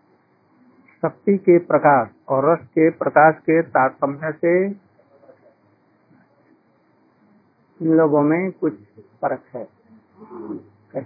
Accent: native